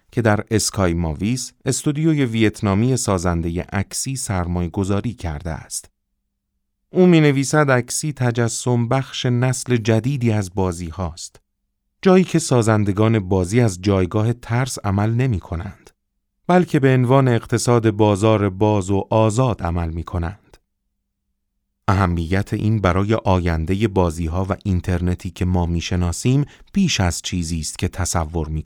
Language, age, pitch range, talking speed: Persian, 30-49, 90-120 Hz, 125 wpm